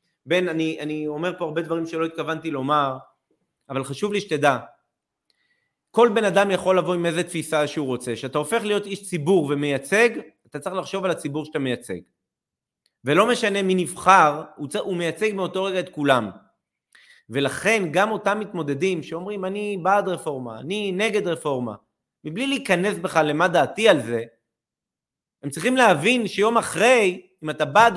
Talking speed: 160 wpm